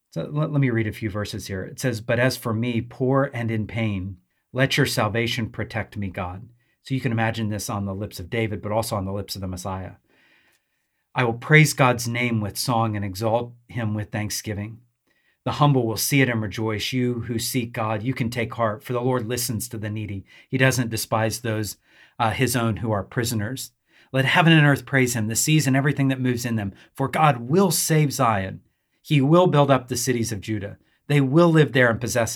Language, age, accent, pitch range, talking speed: English, 40-59, American, 110-130 Hz, 225 wpm